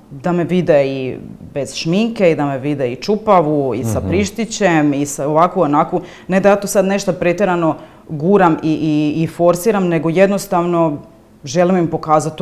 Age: 30-49